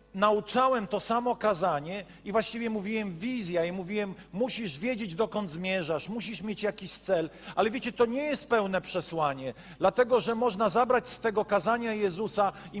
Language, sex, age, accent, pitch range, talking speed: Polish, male, 40-59, native, 185-235 Hz, 160 wpm